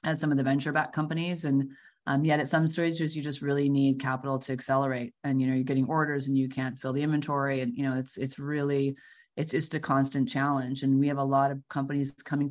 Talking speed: 240 wpm